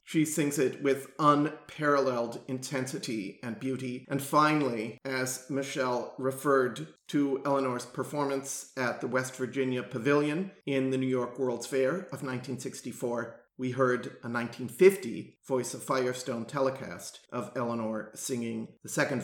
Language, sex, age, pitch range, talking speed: English, male, 40-59, 125-145 Hz, 130 wpm